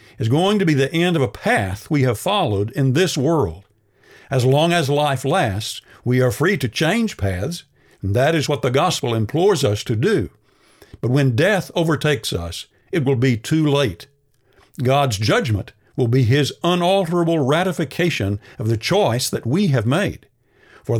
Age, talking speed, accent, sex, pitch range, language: 50-69, 175 wpm, American, male, 115-150 Hz, English